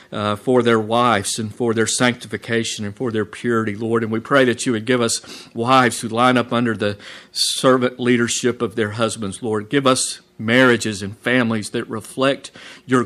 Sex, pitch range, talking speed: male, 110-125 Hz, 190 wpm